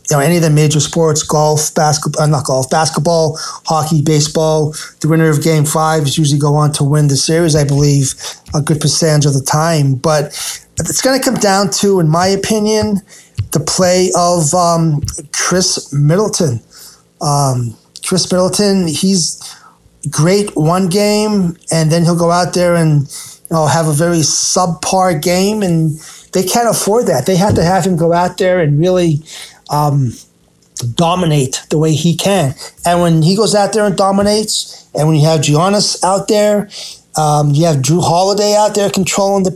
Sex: male